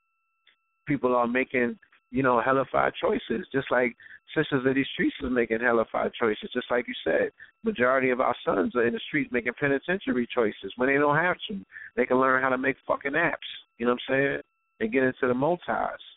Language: English